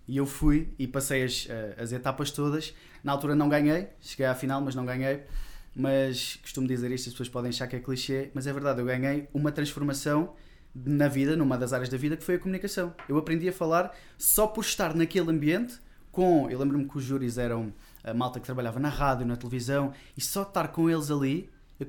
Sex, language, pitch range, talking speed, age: male, Portuguese, 125-155 Hz, 220 wpm, 20-39